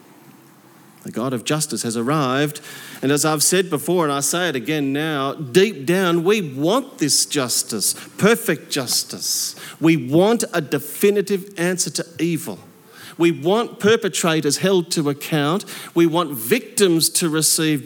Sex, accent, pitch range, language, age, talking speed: male, Australian, 140-180 Hz, English, 40-59, 145 wpm